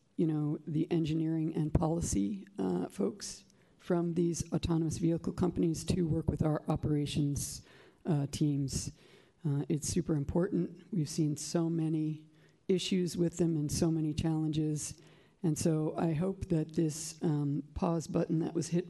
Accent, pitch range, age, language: American, 150-170 Hz, 50-69, English